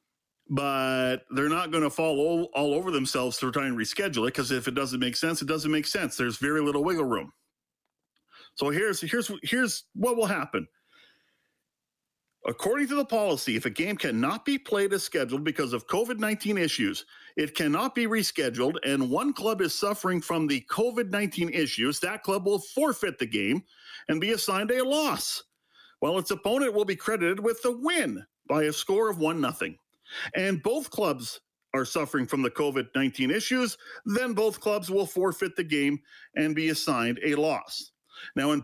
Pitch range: 150-230 Hz